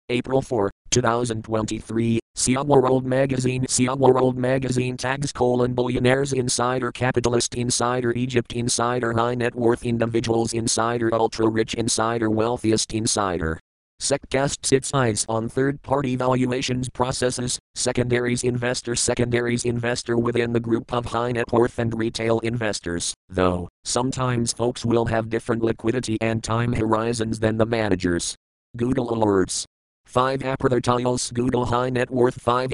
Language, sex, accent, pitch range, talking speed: English, male, American, 110-125 Hz, 130 wpm